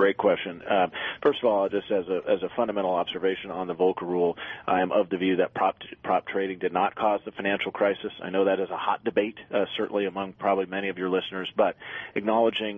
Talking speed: 225 wpm